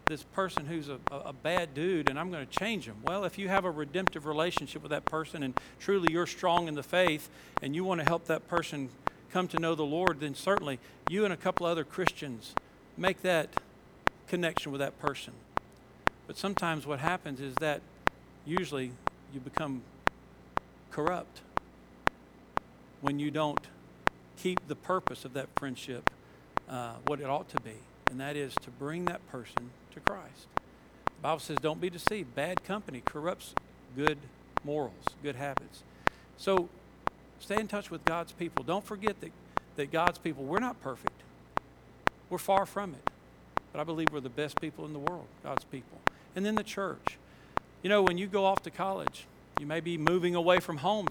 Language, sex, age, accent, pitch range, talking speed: English, male, 50-69, American, 145-185 Hz, 180 wpm